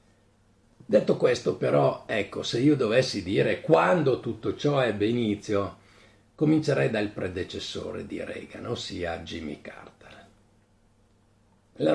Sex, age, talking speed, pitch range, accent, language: male, 50-69, 110 wpm, 100-115 Hz, native, Italian